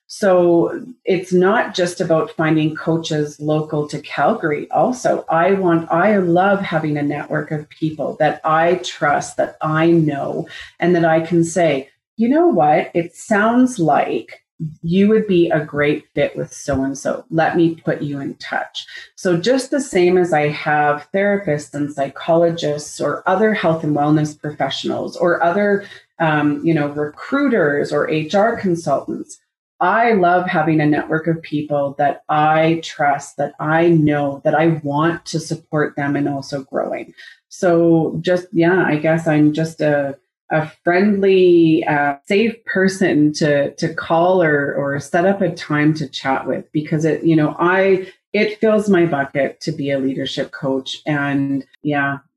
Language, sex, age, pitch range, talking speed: English, female, 30-49, 150-180 Hz, 160 wpm